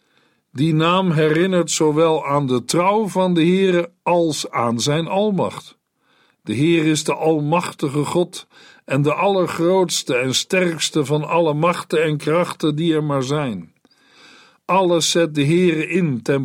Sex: male